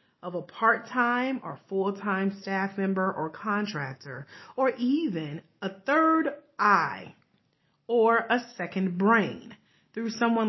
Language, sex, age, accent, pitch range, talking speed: English, female, 40-59, American, 175-225 Hz, 115 wpm